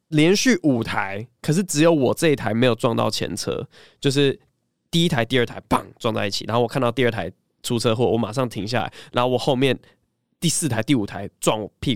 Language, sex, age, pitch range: Chinese, male, 20-39, 115-150 Hz